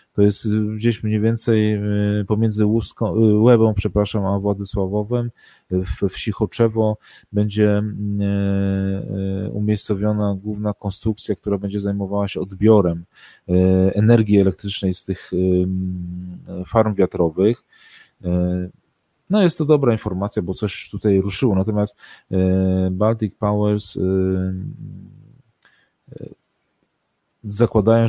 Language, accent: Polish, native